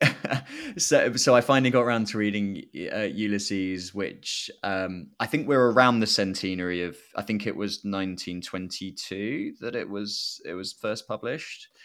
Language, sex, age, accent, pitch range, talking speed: English, male, 20-39, British, 95-110 Hz, 155 wpm